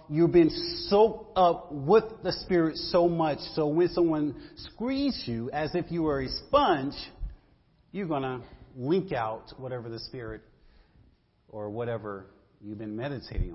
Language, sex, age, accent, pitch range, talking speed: English, male, 40-59, American, 115-165 Hz, 145 wpm